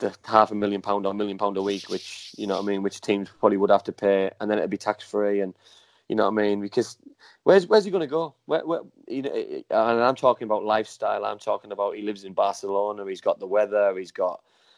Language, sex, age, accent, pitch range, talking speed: English, male, 20-39, British, 100-120 Hz, 270 wpm